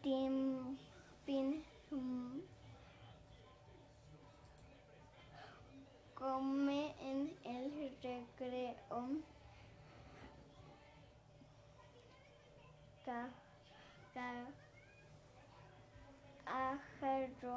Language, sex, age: Spanish, male, 20-39